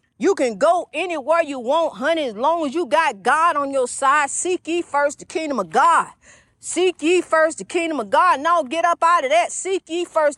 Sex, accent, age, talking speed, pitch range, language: female, American, 40-59, 225 wpm, 295-340 Hz, English